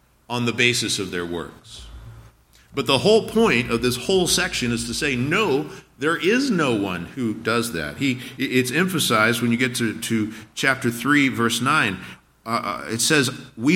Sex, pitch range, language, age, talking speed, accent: male, 110-140 Hz, English, 50-69, 180 wpm, American